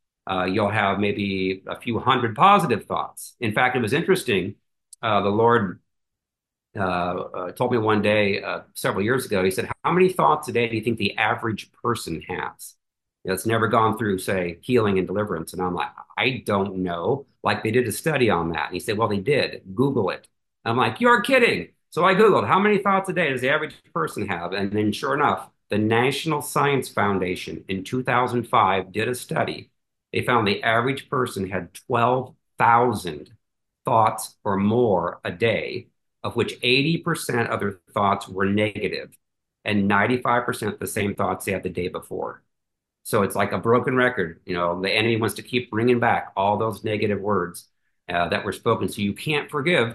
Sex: male